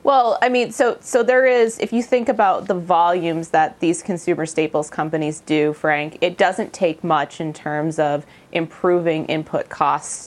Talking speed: 175 wpm